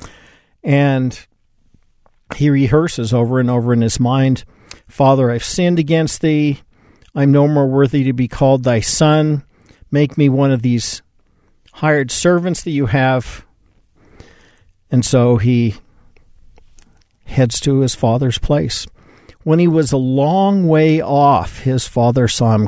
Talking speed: 140 wpm